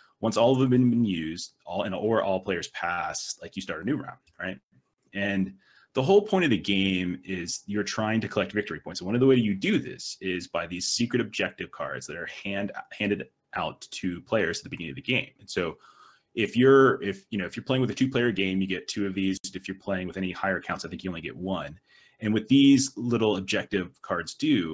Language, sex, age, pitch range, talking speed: English, male, 30-49, 90-110 Hz, 245 wpm